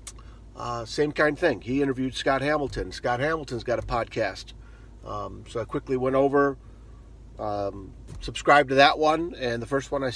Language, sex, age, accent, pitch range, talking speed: English, male, 50-69, American, 110-145 Hz, 175 wpm